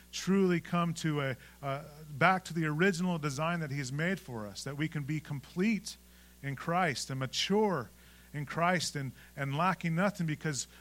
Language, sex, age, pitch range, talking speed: English, male, 40-59, 125-165 Hz, 170 wpm